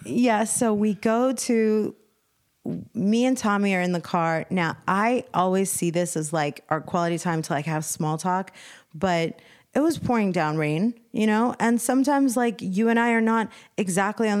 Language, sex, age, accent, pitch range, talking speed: English, female, 30-49, American, 165-200 Hz, 185 wpm